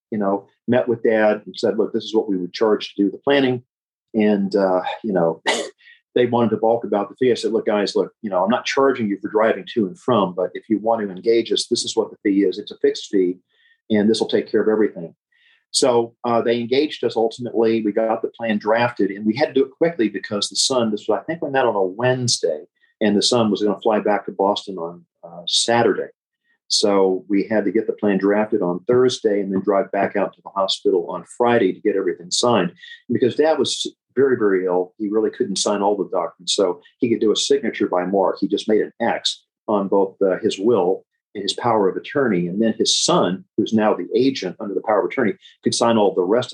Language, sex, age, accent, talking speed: English, male, 40-59, American, 245 wpm